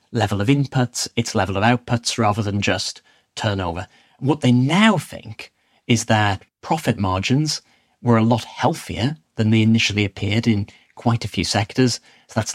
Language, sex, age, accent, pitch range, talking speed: English, male, 30-49, British, 105-130 Hz, 165 wpm